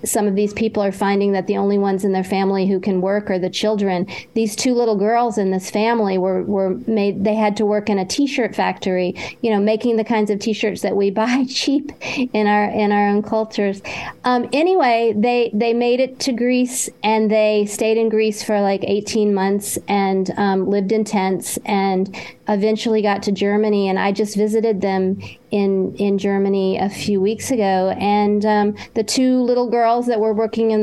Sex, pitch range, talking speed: female, 200-225 Hz, 200 wpm